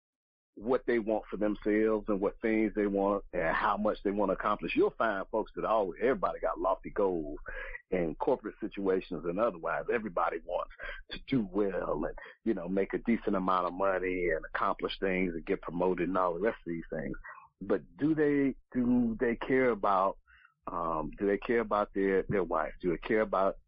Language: English